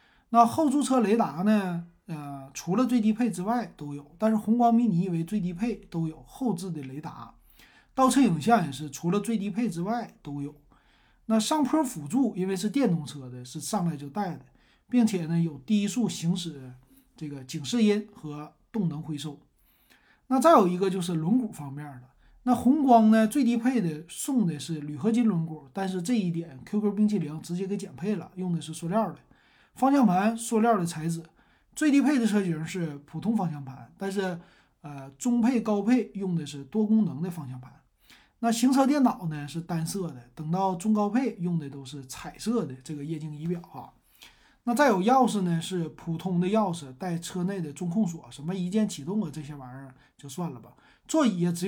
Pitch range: 155-220 Hz